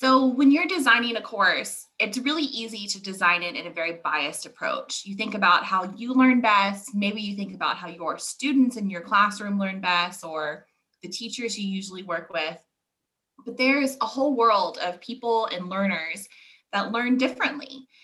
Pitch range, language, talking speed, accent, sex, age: 185-250 Hz, English, 185 wpm, American, female, 20-39